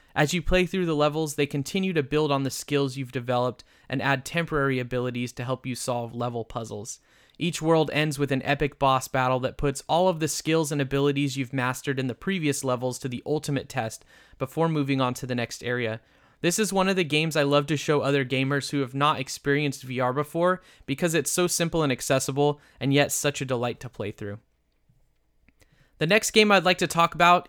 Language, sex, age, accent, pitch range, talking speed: English, male, 20-39, American, 130-160 Hz, 215 wpm